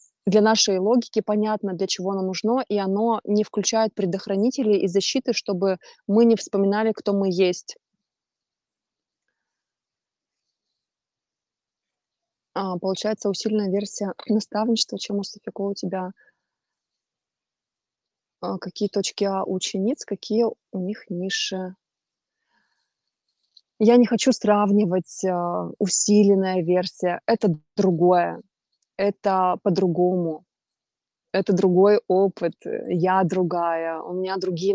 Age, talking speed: 20-39, 100 wpm